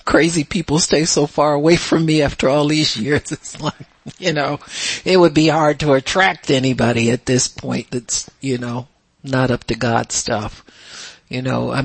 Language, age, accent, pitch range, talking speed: English, 50-69, American, 130-160 Hz, 185 wpm